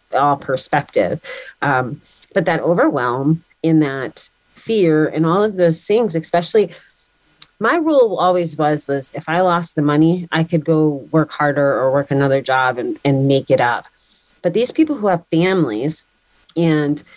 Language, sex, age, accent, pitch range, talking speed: English, female, 30-49, American, 145-175 Hz, 160 wpm